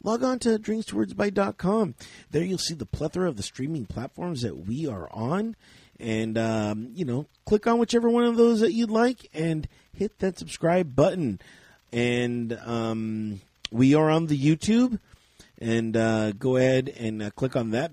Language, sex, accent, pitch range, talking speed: English, male, American, 110-180 Hz, 170 wpm